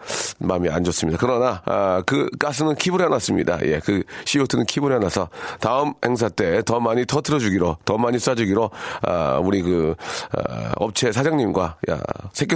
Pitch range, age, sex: 100-130 Hz, 40-59, male